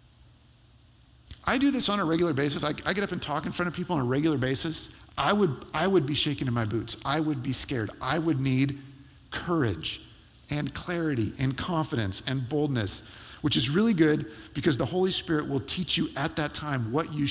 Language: English